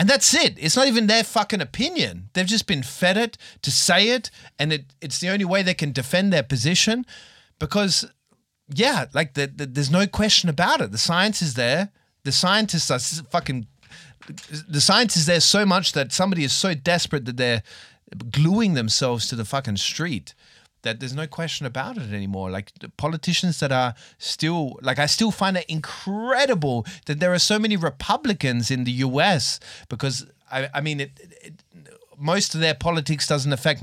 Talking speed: 175 wpm